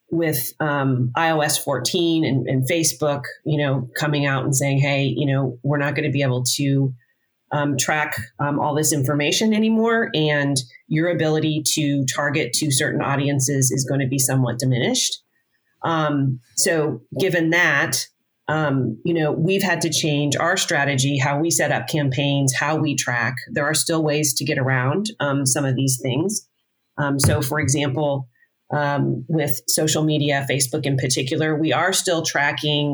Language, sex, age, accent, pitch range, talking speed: English, female, 40-59, American, 135-160 Hz, 170 wpm